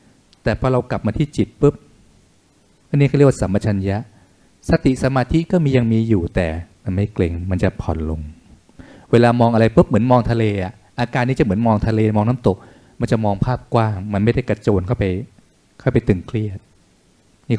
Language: Thai